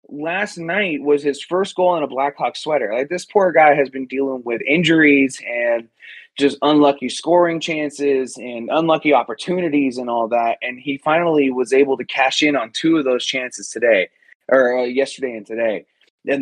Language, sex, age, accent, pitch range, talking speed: English, male, 20-39, American, 120-160 Hz, 185 wpm